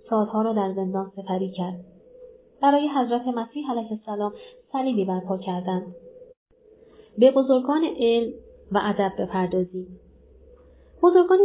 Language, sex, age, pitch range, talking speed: Persian, female, 30-49, 195-270 Hz, 110 wpm